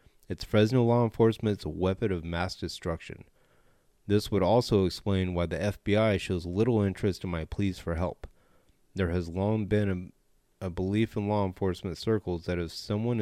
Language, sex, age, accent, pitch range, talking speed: English, male, 30-49, American, 85-105 Hz, 170 wpm